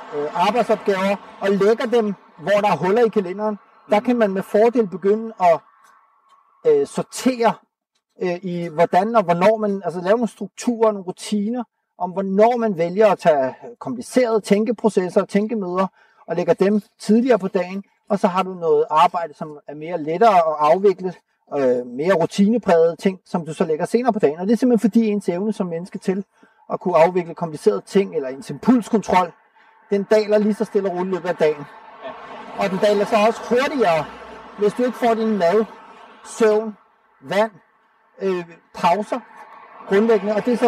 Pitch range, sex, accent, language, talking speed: 190-225 Hz, male, native, Danish, 180 wpm